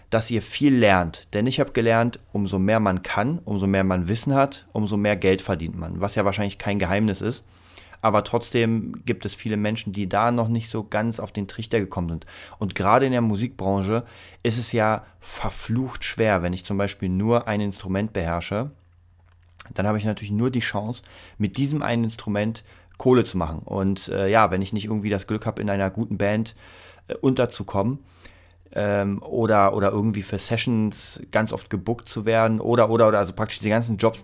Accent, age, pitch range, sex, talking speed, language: German, 30-49, 95-115 Hz, male, 195 wpm, German